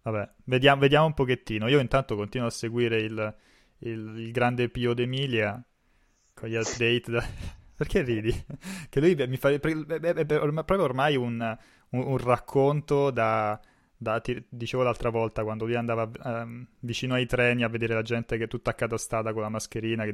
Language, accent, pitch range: Italian, native, 110-125 Hz